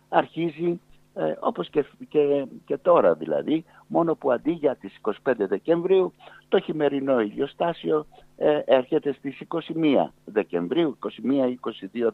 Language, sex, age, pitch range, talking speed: Greek, male, 60-79, 120-175 Hz, 120 wpm